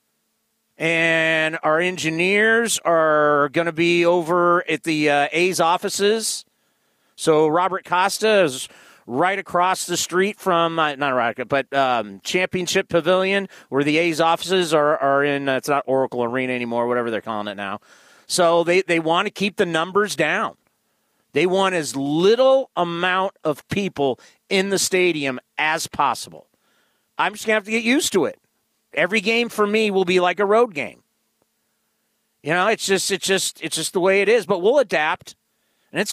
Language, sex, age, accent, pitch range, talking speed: English, male, 40-59, American, 150-195 Hz, 175 wpm